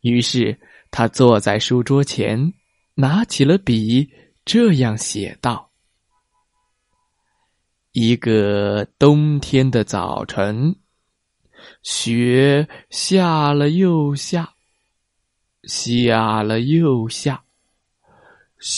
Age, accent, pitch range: 20-39, native, 110-155 Hz